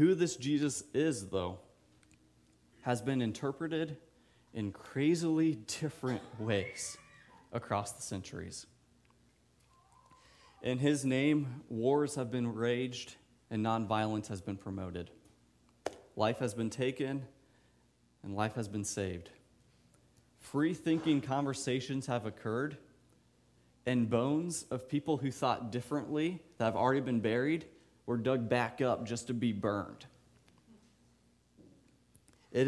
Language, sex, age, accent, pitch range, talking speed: English, male, 30-49, American, 100-130 Hz, 110 wpm